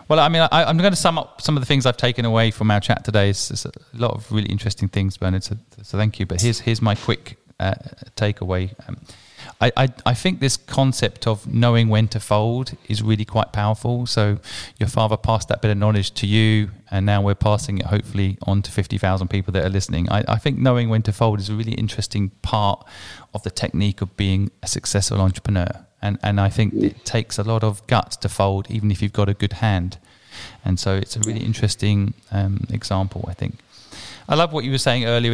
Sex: male